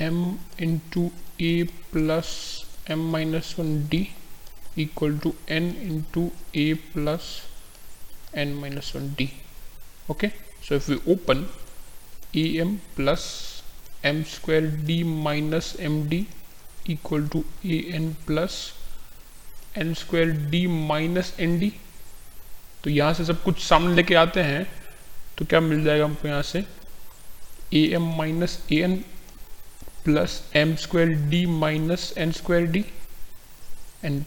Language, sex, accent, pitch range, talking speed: Hindi, male, native, 140-170 Hz, 120 wpm